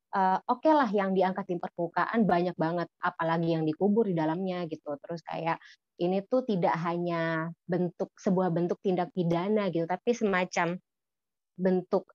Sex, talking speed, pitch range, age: female, 150 wpm, 175-220 Hz, 20-39